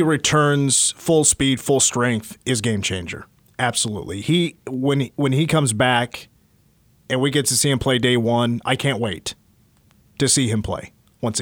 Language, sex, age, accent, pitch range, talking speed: English, male, 30-49, American, 120-145 Hz, 170 wpm